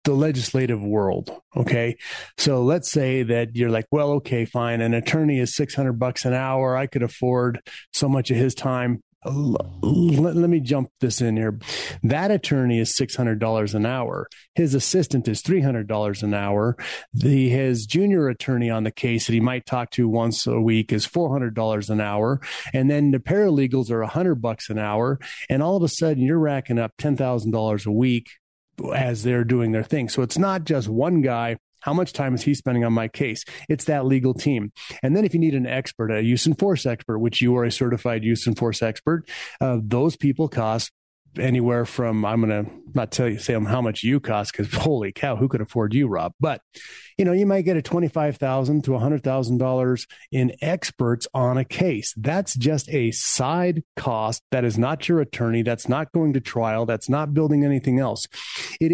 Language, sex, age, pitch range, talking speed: English, male, 30-49, 115-145 Hz, 195 wpm